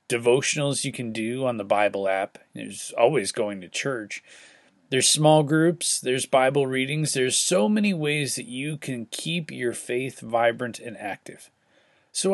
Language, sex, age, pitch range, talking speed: English, male, 30-49, 120-165 Hz, 160 wpm